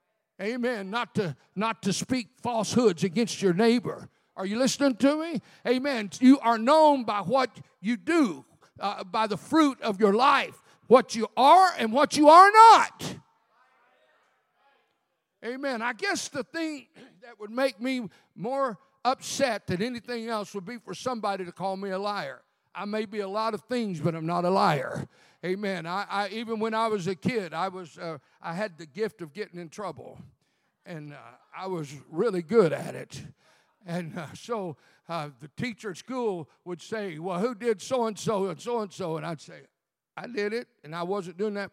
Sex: male